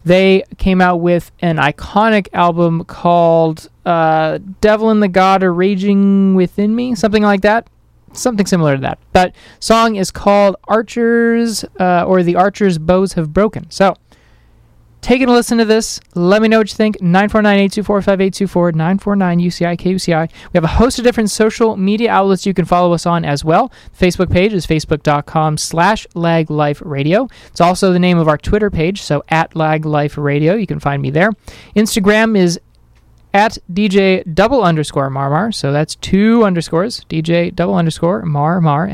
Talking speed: 160 wpm